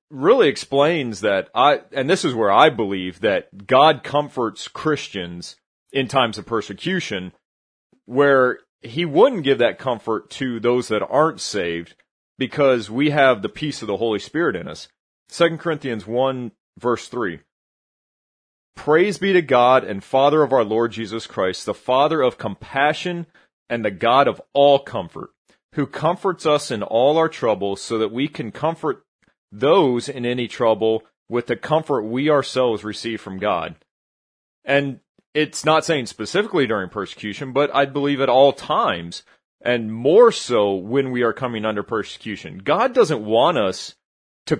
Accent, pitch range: American, 110-145 Hz